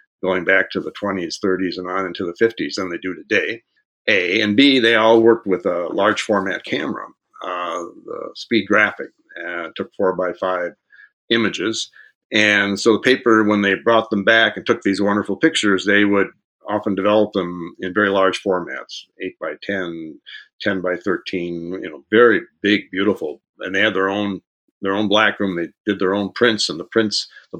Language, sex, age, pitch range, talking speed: English, male, 60-79, 100-115 Hz, 190 wpm